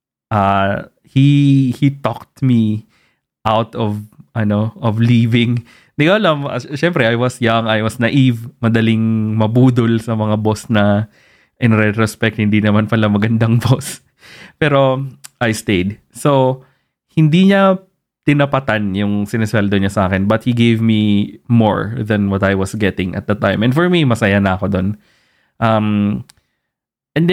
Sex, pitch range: male, 105-135 Hz